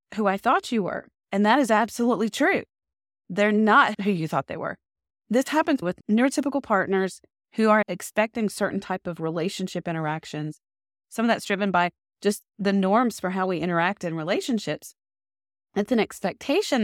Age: 30-49